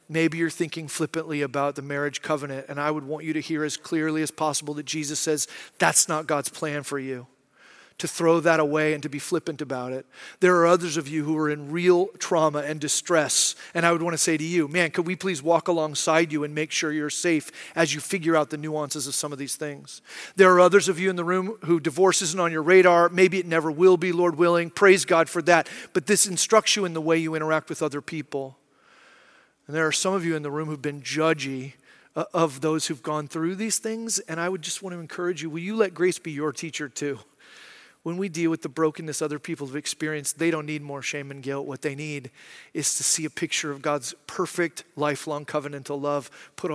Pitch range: 150-175 Hz